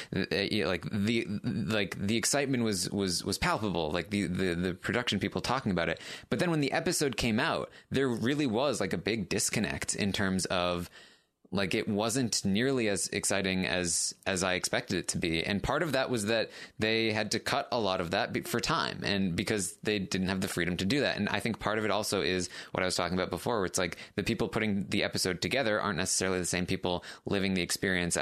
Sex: male